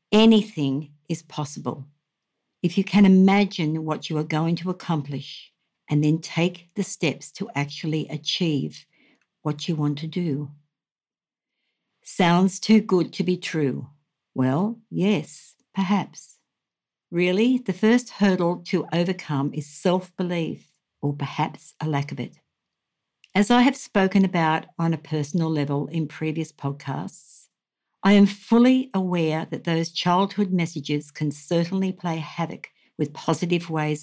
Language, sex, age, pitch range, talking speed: English, female, 60-79, 150-190 Hz, 135 wpm